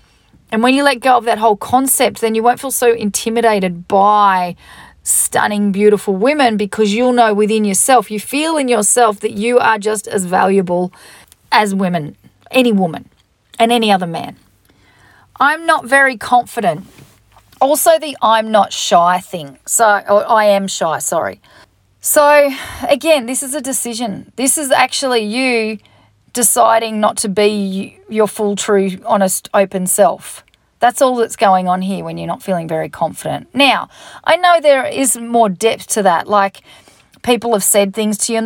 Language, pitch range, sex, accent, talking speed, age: English, 190-240 Hz, female, Australian, 165 wpm, 40-59